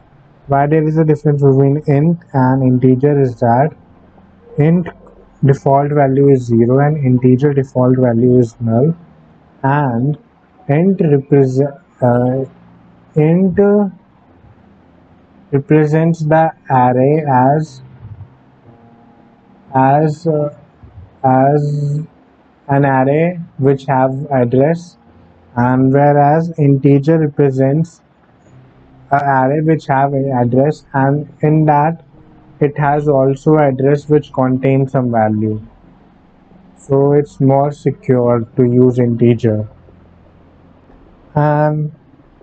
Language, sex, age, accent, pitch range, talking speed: English, male, 30-49, Indian, 125-150 Hz, 95 wpm